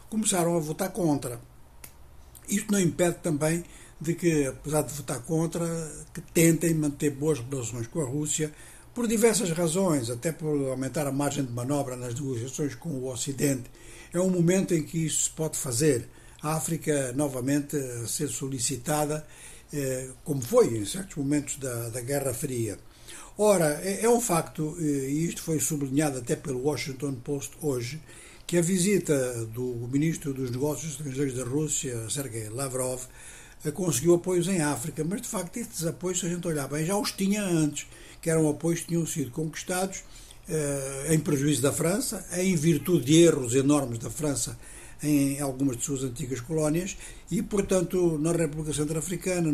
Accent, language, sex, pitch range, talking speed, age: Brazilian, Portuguese, male, 135-165 Hz, 160 wpm, 60-79